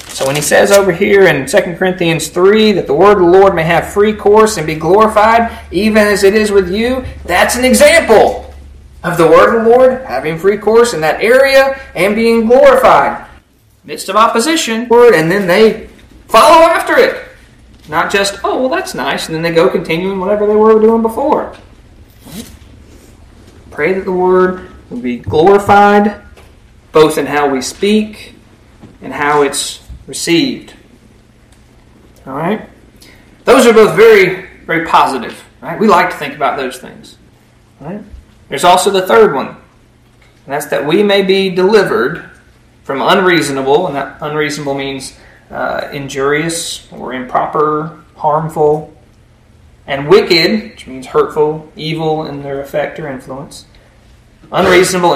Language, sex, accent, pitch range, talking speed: English, male, American, 145-220 Hz, 150 wpm